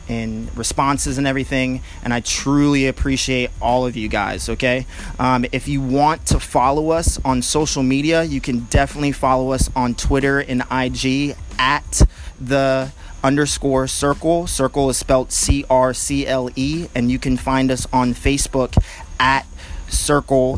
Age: 30-49